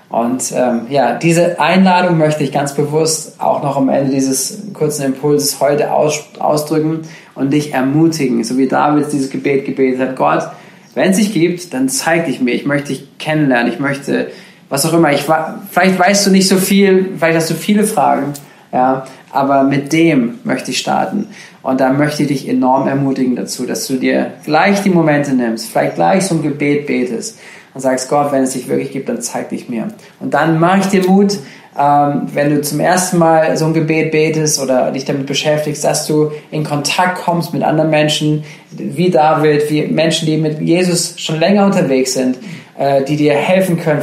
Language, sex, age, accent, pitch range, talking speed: German, male, 20-39, German, 135-165 Hz, 195 wpm